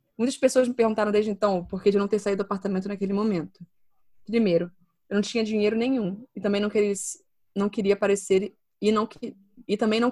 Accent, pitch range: Brazilian, 185-215 Hz